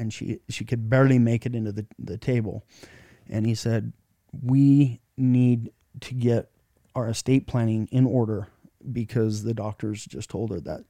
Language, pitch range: English, 110-130 Hz